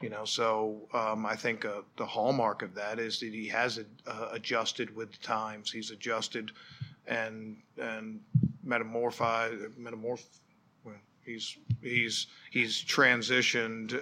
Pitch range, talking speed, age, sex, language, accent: 110-120 Hz, 135 wpm, 50-69, male, English, American